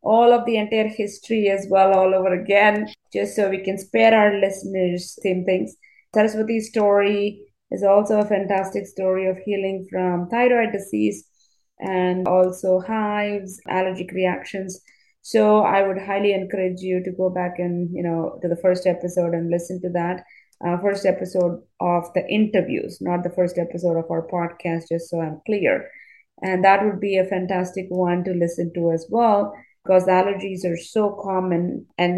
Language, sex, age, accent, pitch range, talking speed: English, female, 20-39, Indian, 175-200 Hz, 170 wpm